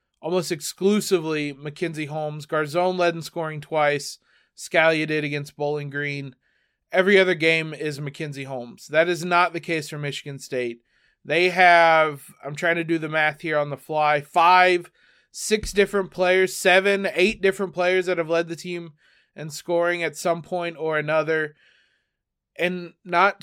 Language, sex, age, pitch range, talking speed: English, male, 30-49, 150-185 Hz, 160 wpm